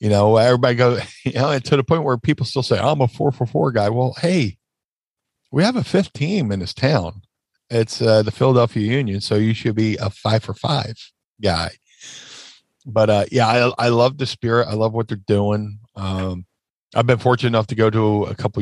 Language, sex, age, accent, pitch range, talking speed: English, male, 40-59, American, 100-120 Hz, 215 wpm